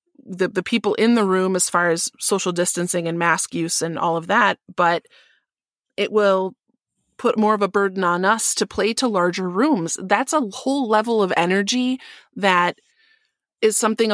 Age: 30-49